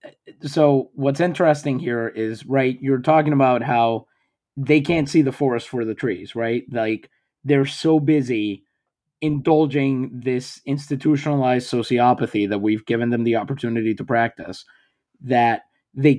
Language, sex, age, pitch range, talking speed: English, male, 30-49, 125-175 Hz, 135 wpm